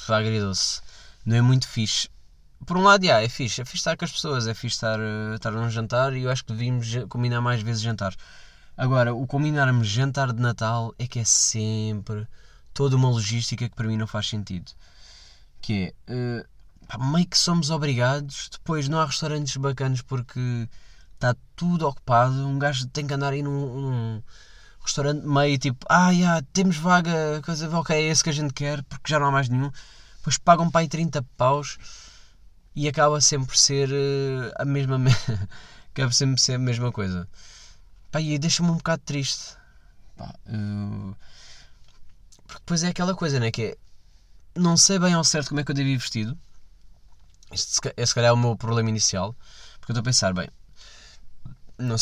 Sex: male